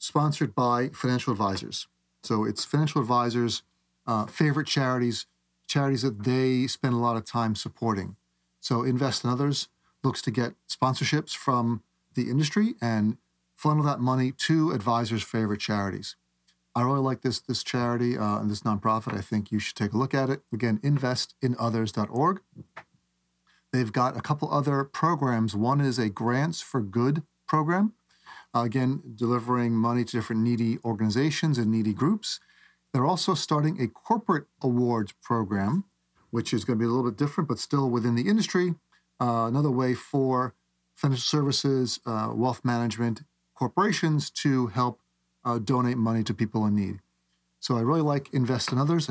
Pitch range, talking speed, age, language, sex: 110-145 Hz, 160 wpm, 40-59, English, male